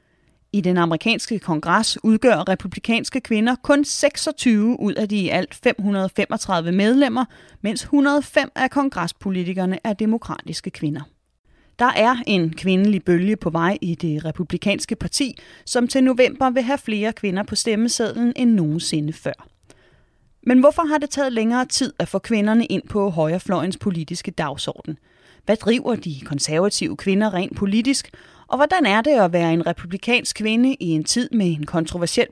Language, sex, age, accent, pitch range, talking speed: Danish, female, 30-49, native, 170-235 Hz, 150 wpm